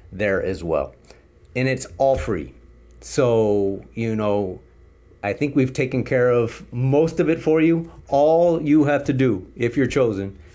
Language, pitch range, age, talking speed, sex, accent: English, 90-135 Hz, 30-49, 165 wpm, male, American